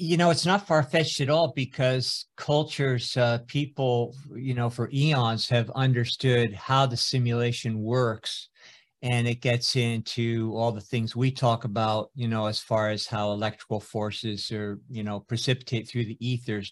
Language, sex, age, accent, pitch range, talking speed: English, male, 50-69, American, 110-130 Hz, 165 wpm